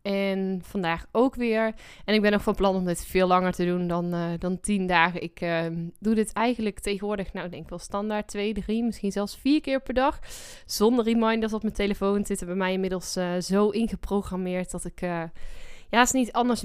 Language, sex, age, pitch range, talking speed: Dutch, female, 10-29, 185-225 Hz, 215 wpm